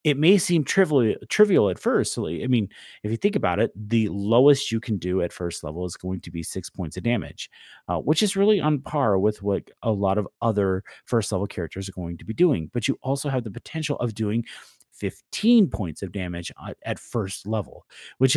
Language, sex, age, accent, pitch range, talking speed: English, male, 30-49, American, 100-150 Hz, 210 wpm